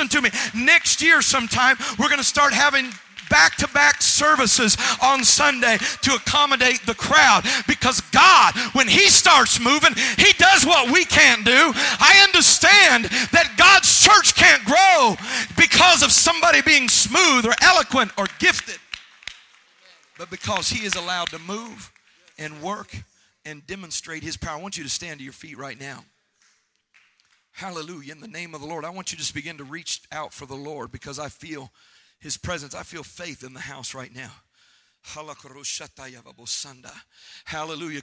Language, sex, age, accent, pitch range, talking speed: English, male, 40-59, American, 155-225 Hz, 160 wpm